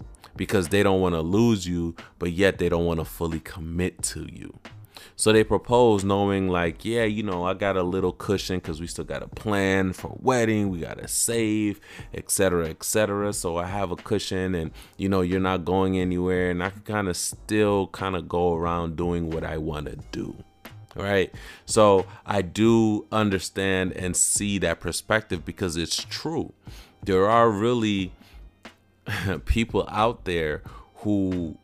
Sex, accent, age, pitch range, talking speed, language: male, American, 30-49, 85-105 Hz, 175 wpm, English